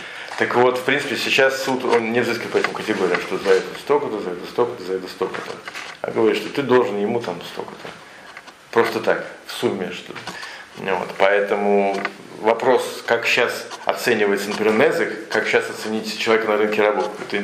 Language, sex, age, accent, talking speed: Russian, male, 40-59, native, 170 wpm